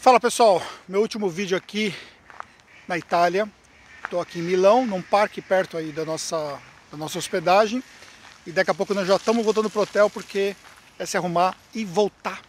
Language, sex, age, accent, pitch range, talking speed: Portuguese, male, 50-69, Brazilian, 175-215 Hz, 185 wpm